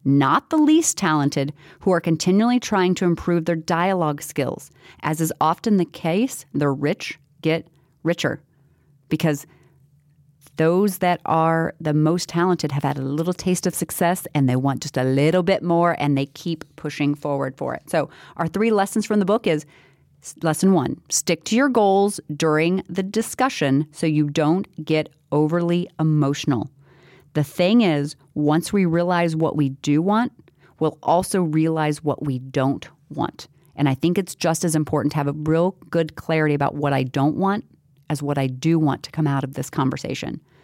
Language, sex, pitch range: English, female, 145-180 Hz